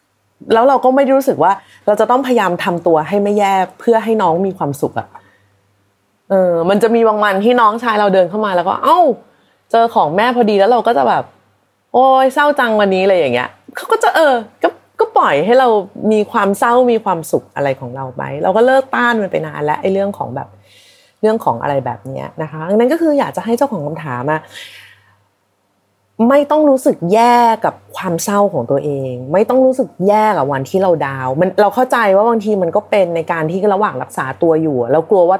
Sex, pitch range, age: female, 160-240 Hz, 20-39